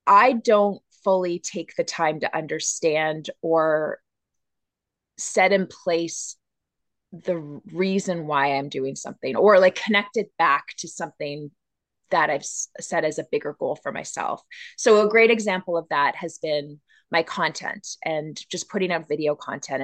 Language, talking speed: English, 150 wpm